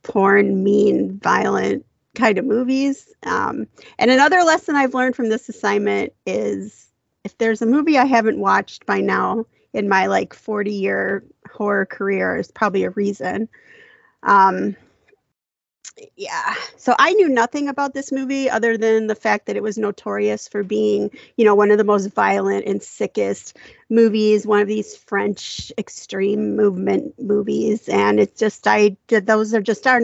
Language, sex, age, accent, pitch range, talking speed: English, female, 30-49, American, 205-255 Hz, 160 wpm